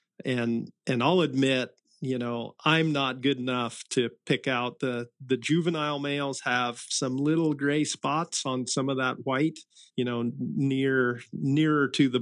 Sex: male